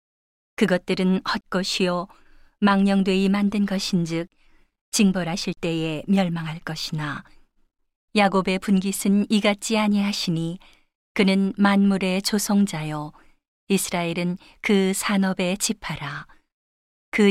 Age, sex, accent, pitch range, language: 40-59, female, native, 175-200 Hz, Korean